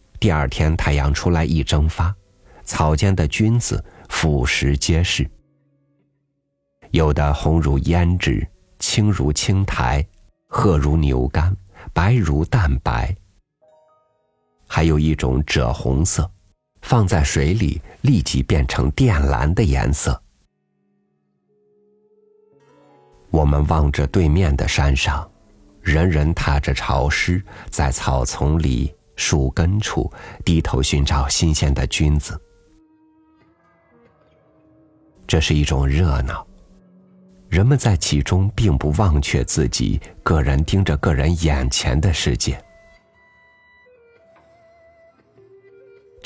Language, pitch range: Chinese, 75-110 Hz